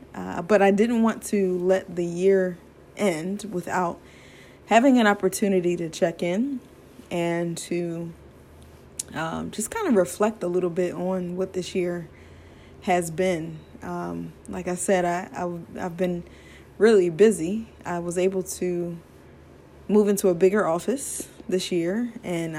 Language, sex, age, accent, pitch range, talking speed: English, female, 20-39, American, 175-200 Hz, 145 wpm